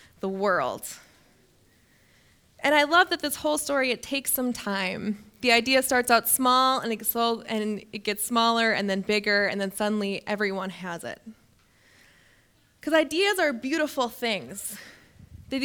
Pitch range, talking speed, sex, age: 210-255 Hz, 140 wpm, female, 20-39